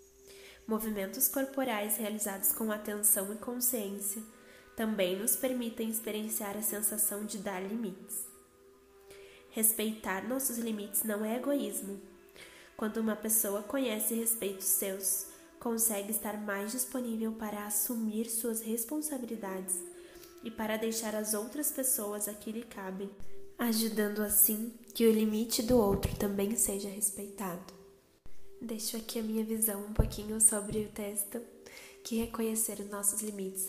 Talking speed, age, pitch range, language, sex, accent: 125 wpm, 10-29, 200-230 Hz, Portuguese, female, Brazilian